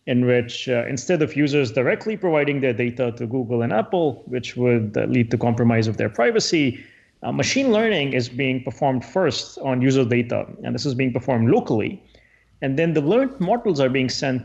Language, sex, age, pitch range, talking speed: English, male, 30-49, 125-165 Hz, 195 wpm